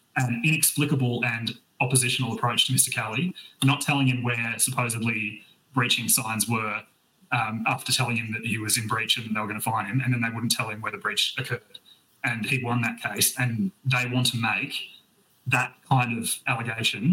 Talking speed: 195 wpm